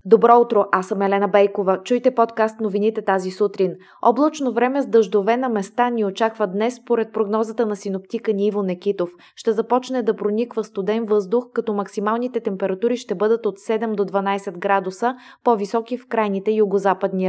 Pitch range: 200-230 Hz